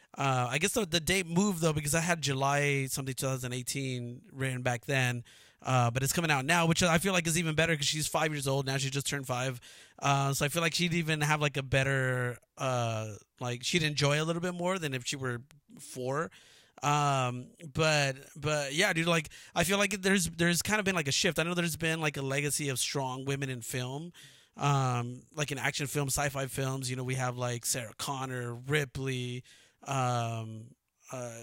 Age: 30-49